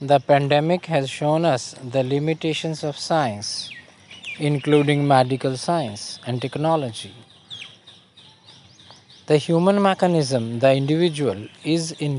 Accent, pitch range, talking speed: Indian, 130-160 Hz, 105 wpm